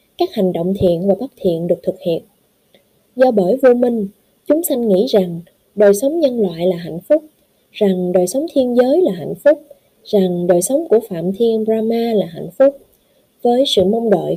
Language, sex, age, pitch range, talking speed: Vietnamese, female, 20-39, 185-255 Hz, 195 wpm